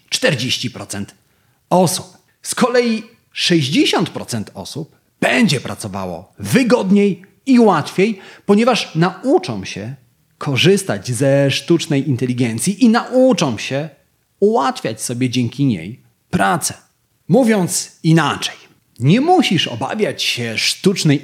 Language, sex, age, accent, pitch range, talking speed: Polish, male, 40-59, native, 125-195 Hz, 90 wpm